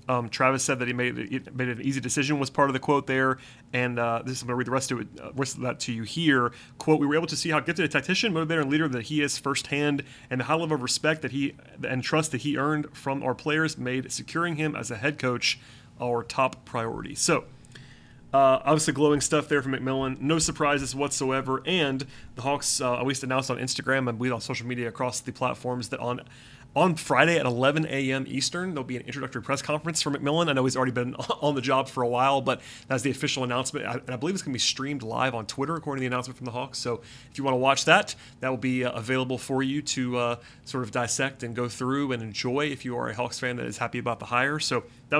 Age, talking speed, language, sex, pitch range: 30-49, 260 wpm, English, male, 125-145 Hz